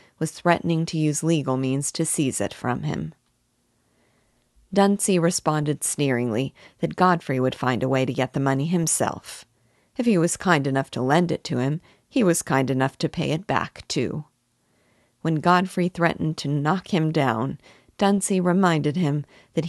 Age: 50-69